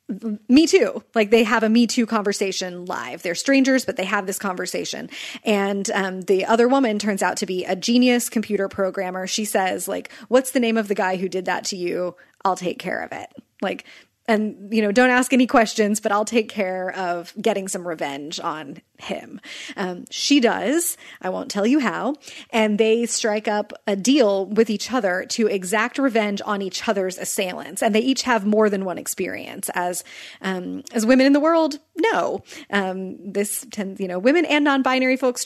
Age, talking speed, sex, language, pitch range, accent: 30-49, 195 wpm, female, English, 195-250 Hz, American